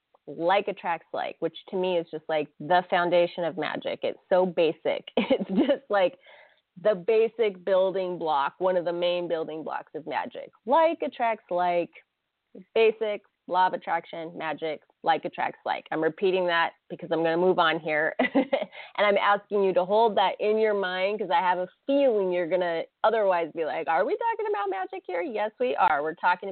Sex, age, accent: female, 30-49, American